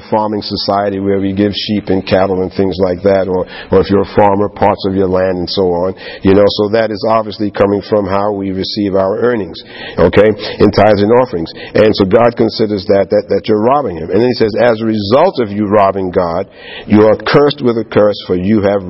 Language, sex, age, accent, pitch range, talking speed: English, male, 50-69, American, 100-115 Hz, 230 wpm